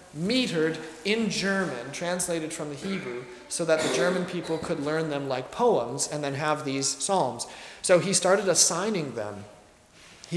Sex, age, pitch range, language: male, 30-49, 145-190 Hz, English